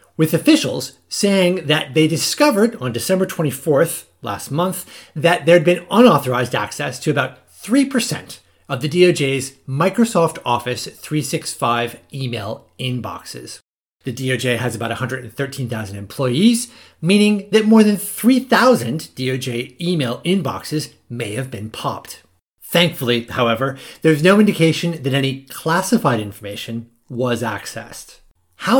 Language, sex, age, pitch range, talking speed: English, male, 30-49, 120-175 Hz, 120 wpm